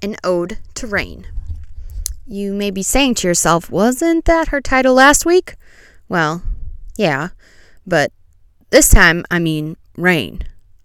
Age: 20-39